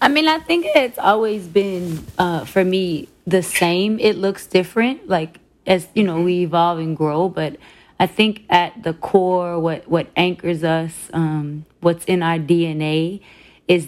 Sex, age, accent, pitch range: female, 20-39, American, 160-185 Hz